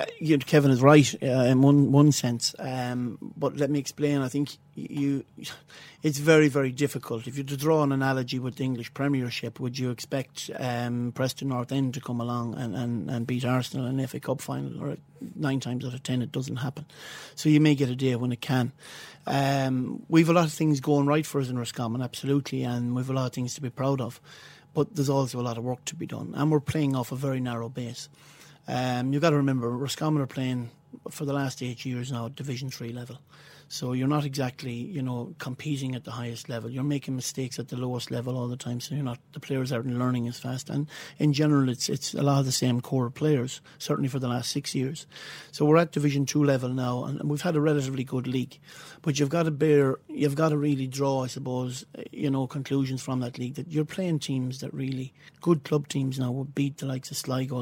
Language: English